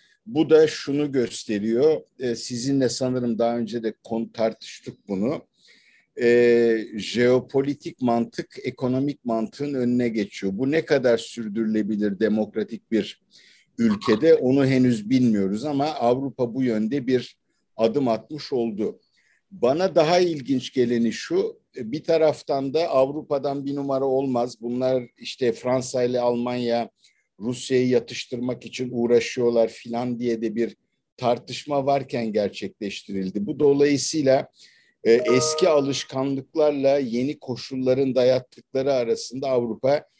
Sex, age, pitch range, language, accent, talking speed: male, 50-69, 115-140 Hz, Turkish, native, 110 wpm